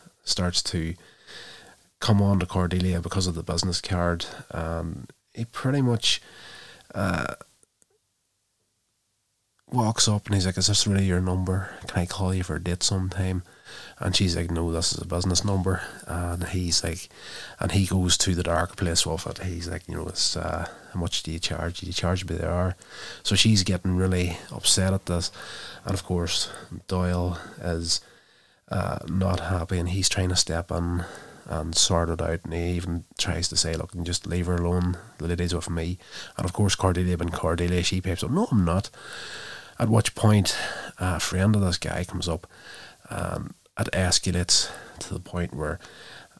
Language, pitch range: English, 85-95 Hz